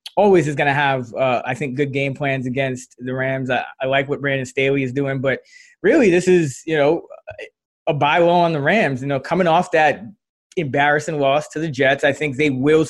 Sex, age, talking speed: male, 20-39, 220 wpm